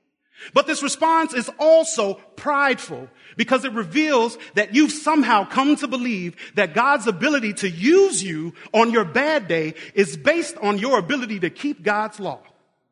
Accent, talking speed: American, 160 wpm